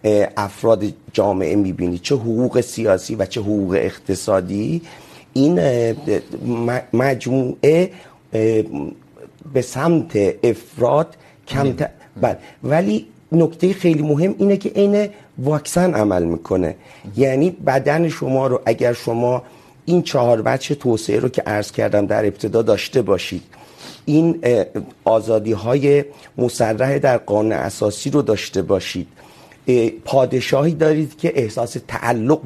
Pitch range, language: 110-150 Hz, Urdu